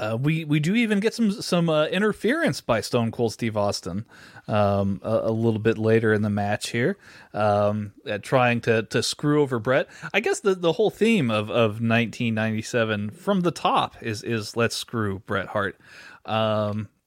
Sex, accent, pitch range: male, American, 105-135 Hz